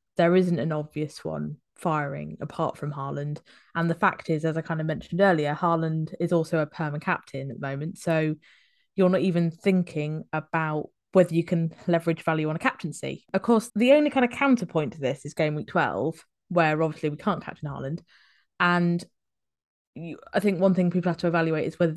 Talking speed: 200 wpm